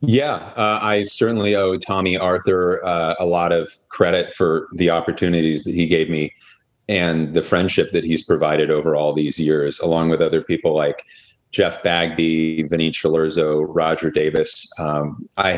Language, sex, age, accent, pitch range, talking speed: English, male, 30-49, American, 80-95 Hz, 160 wpm